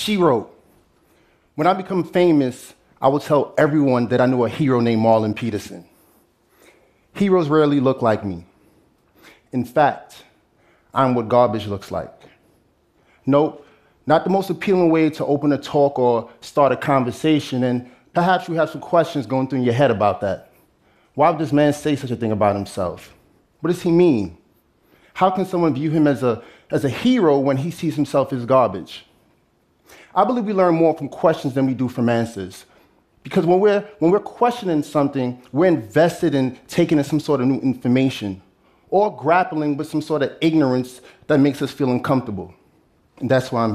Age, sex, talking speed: 30-49, male, 180 wpm